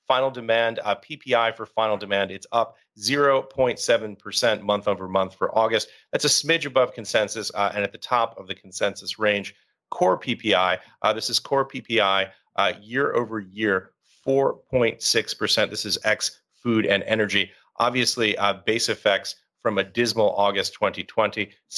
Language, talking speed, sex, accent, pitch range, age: English, 150 wpm, male, American, 100-120 Hz, 40-59